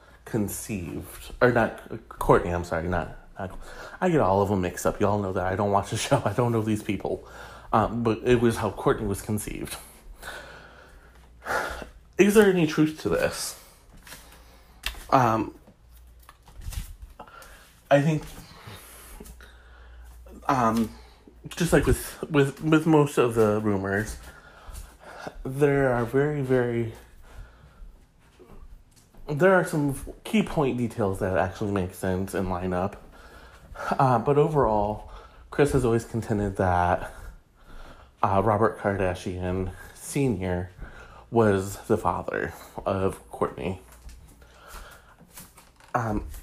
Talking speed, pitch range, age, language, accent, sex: 120 wpm, 90-120 Hz, 30-49, English, American, male